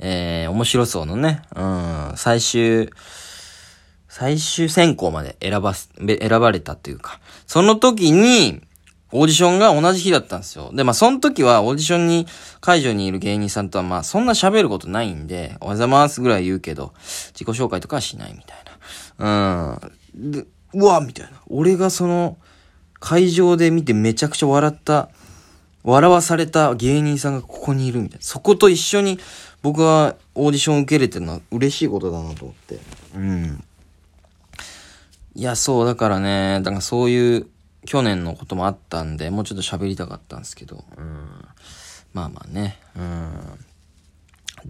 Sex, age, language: male, 20-39, Japanese